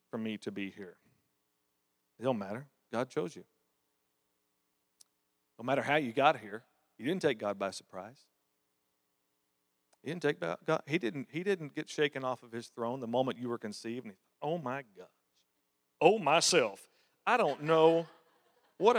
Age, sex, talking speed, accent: 40-59, male, 140 wpm, American